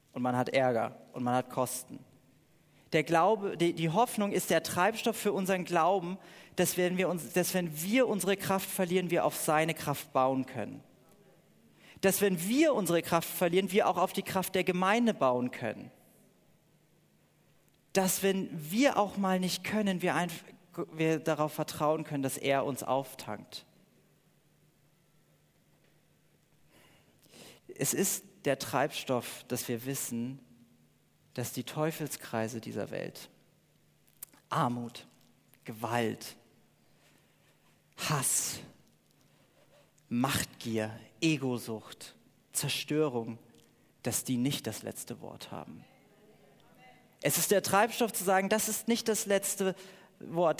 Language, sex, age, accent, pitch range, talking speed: German, male, 40-59, German, 130-190 Hz, 125 wpm